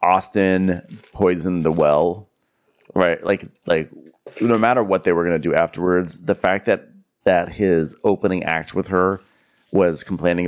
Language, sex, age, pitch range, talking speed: English, male, 30-49, 85-115 Hz, 155 wpm